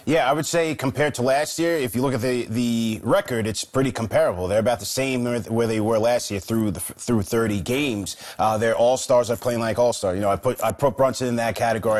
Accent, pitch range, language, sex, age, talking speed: American, 110-130 Hz, English, male, 30-49, 255 wpm